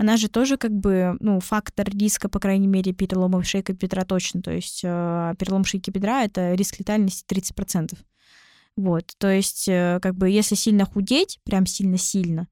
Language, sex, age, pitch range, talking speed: Russian, female, 20-39, 180-210 Hz, 170 wpm